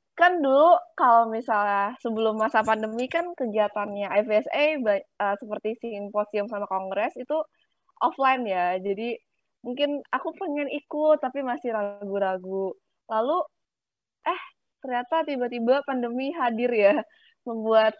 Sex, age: female, 20-39